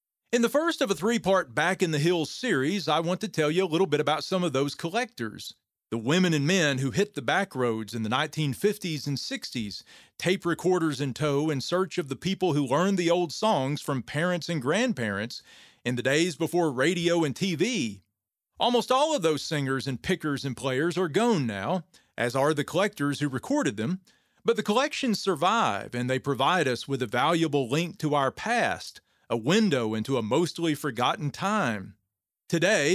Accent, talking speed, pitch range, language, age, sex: American, 190 wpm, 135-185 Hz, English, 40-59, male